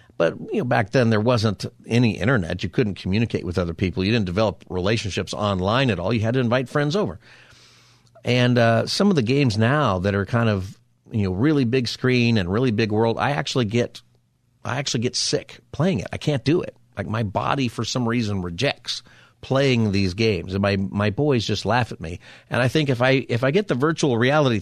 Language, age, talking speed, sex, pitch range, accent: English, 50-69, 220 wpm, male, 100-130 Hz, American